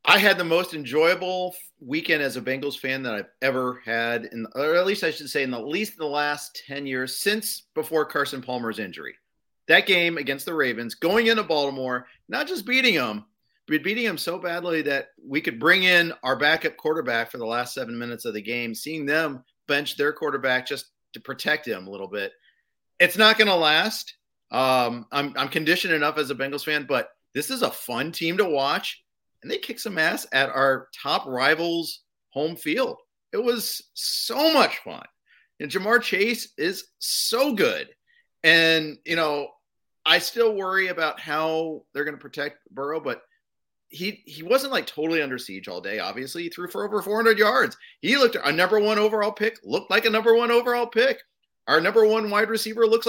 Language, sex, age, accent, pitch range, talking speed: English, male, 40-59, American, 140-220 Hz, 195 wpm